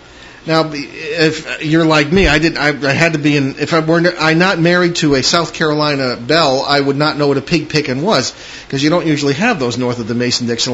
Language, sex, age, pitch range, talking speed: English, male, 40-59, 125-165 Hz, 240 wpm